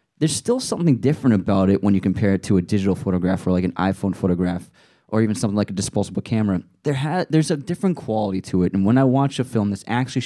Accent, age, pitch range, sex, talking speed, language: American, 20-39, 100-135 Hz, male, 245 wpm, English